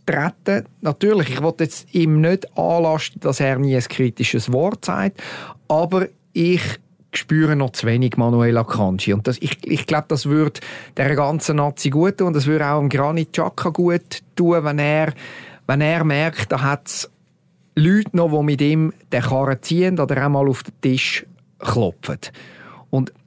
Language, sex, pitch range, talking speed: German, male, 140-175 Hz, 170 wpm